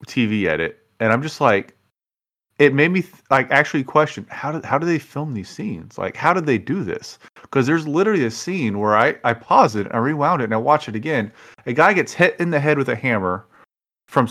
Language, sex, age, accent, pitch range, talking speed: English, male, 30-49, American, 110-145 Hz, 235 wpm